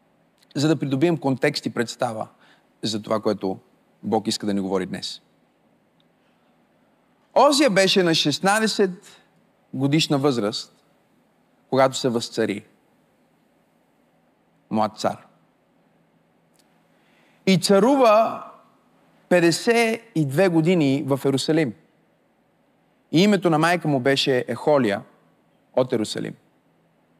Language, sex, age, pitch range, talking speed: Bulgarian, male, 30-49, 130-175 Hz, 90 wpm